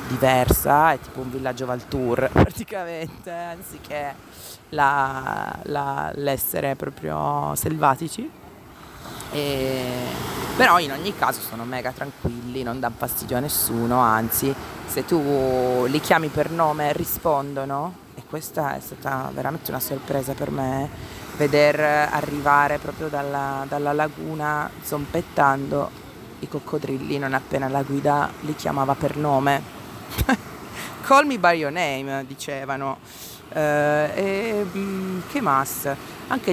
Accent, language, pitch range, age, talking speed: native, Italian, 135-155 Hz, 30-49, 115 wpm